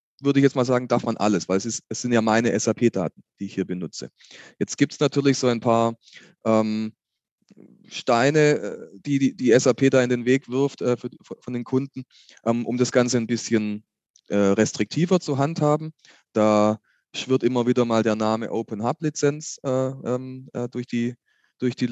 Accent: German